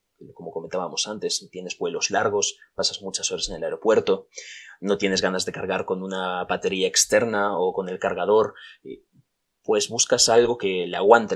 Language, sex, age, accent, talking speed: Spanish, male, 20-39, Spanish, 165 wpm